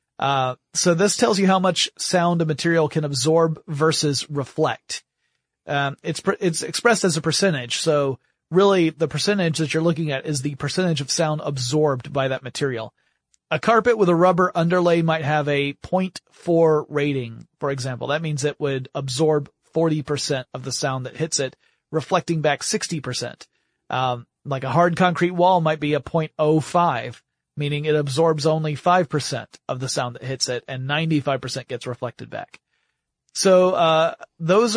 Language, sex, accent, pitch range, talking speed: English, male, American, 130-165 Hz, 170 wpm